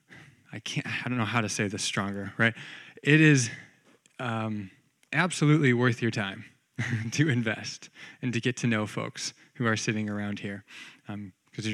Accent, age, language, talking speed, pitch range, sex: American, 20-39, English, 175 wpm, 110-150 Hz, male